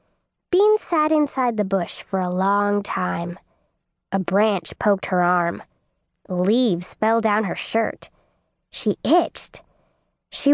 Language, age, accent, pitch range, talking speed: English, 10-29, American, 190-275 Hz, 125 wpm